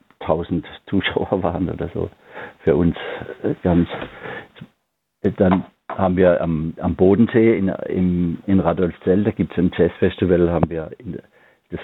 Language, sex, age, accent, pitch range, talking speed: German, male, 60-79, German, 85-100 Hz, 115 wpm